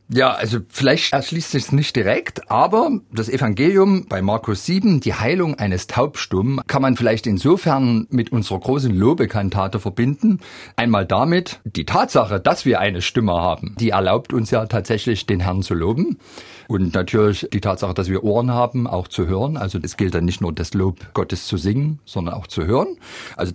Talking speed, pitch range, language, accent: 185 wpm, 95-120 Hz, German, German